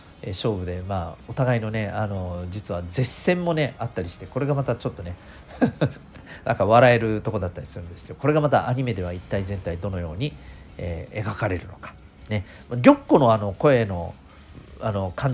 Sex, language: male, Japanese